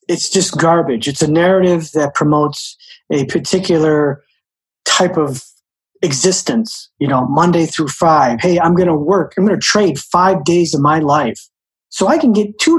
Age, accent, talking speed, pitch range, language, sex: 40-59, American, 175 wpm, 150-200 Hz, English, male